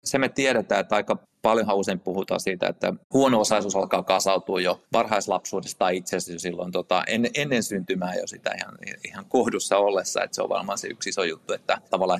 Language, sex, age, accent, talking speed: Finnish, male, 30-49, native, 195 wpm